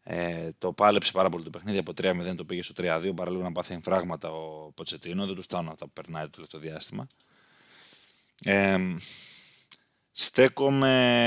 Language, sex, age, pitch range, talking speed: Greek, male, 20-39, 90-120 Hz, 160 wpm